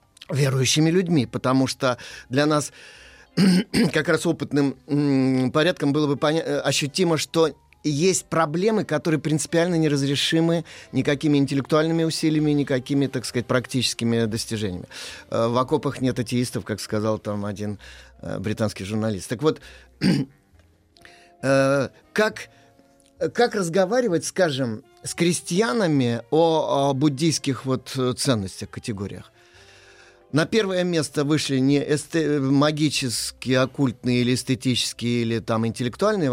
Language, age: Russian, 30-49